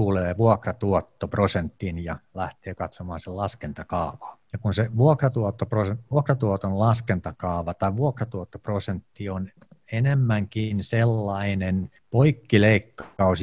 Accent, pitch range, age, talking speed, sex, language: native, 90-115 Hz, 50-69, 85 wpm, male, Finnish